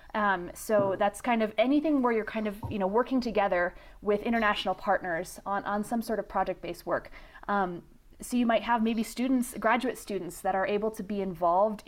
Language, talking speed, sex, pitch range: English, 195 wpm, female, 180-220 Hz